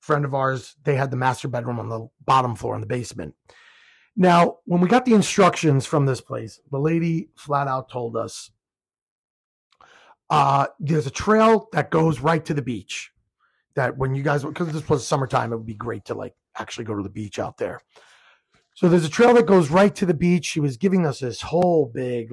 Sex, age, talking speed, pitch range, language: male, 30-49, 210 wpm, 130-185 Hz, English